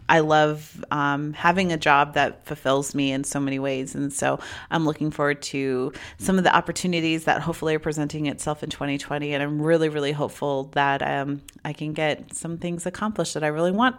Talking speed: 200 wpm